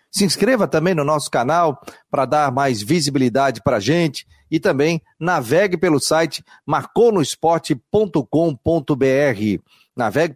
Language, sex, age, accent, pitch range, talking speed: Portuguese, male, 40-59, Brazilian, 130-160 Hz, 115 wpm